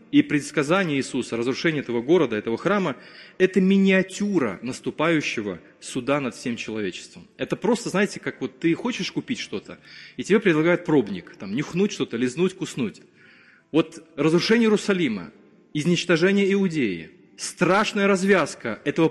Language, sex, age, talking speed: Russian, male, 30-49, 130 wpm